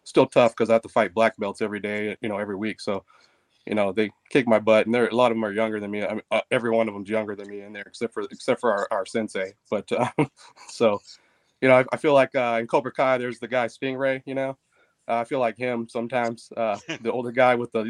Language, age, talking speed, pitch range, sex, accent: English, 20-39, 275 wpm, 105-130 Hz, male, American